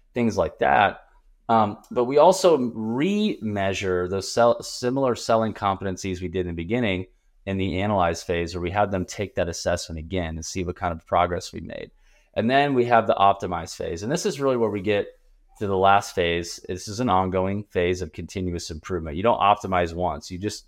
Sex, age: male, 20-39